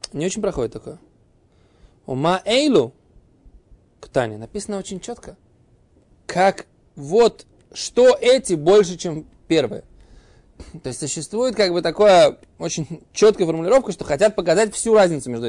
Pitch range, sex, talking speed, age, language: 135-185 Hz, male, 130 wpm, 20-39, Russian